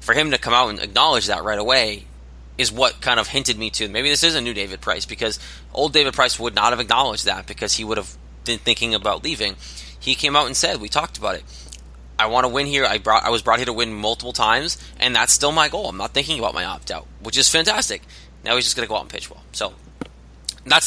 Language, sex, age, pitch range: English, male, 20-39, 100-130 Hz